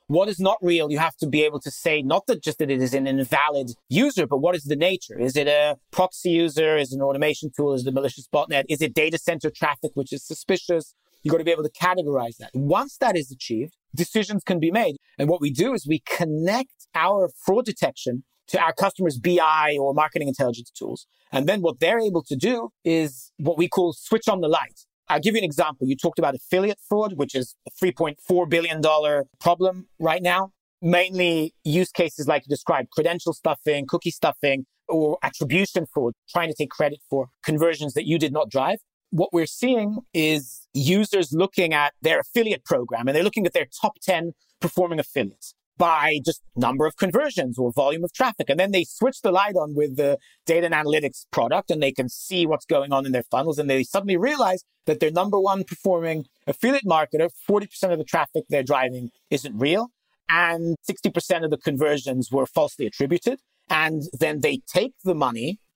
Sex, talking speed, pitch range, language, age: male, 205 wpm, 145-180 Hz, English, 30-49